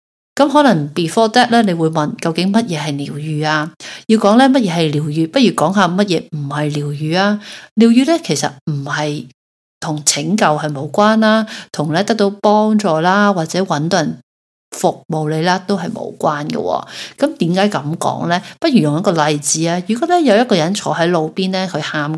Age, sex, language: 30-49, female, Chinese